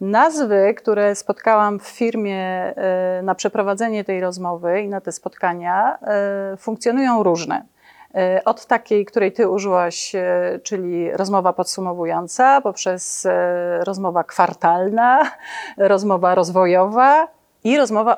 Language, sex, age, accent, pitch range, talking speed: Polish, female, 30-49, native, 190-235 Hz, 100 wpm